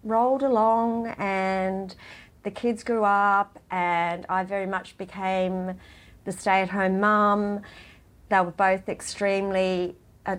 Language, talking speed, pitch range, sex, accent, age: English, 115 wpm, 180-215 Hz, female, Australian, 40-59